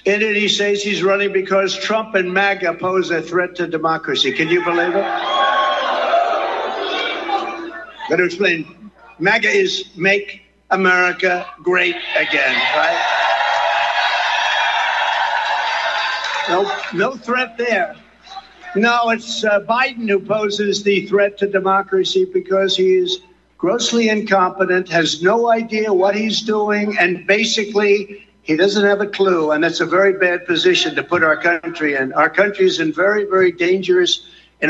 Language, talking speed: English, 135 wpm